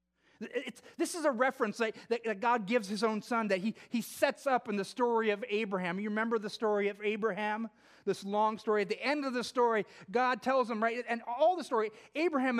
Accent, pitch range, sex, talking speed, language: American, 210-275 Hz, male, 215 wpm, English